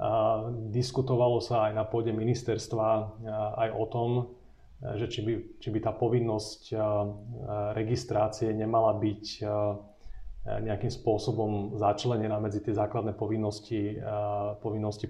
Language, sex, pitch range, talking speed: Slovak, male, 105-115 Hz, 105 wpm